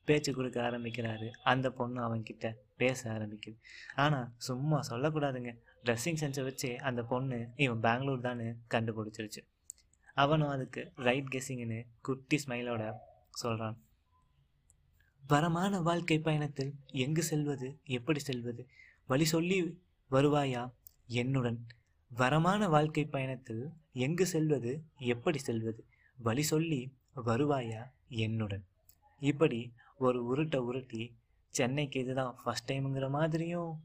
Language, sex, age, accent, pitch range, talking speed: Tamil, male, 20-39, native, 120-145 Hz, 100 wpm